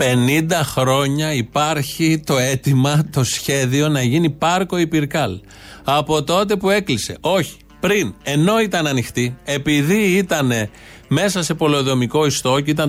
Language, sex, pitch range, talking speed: Greek, male, 130-185 Hz, 130 wpm